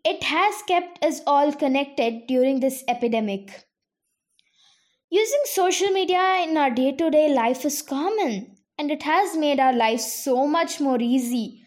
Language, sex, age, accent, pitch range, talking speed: English, female, 20-39, Indian, 270-385 Hz, 145 wpm